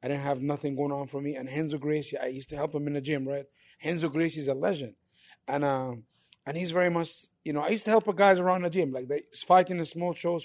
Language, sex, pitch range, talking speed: English, male, 145-180 Hz, 270 wpm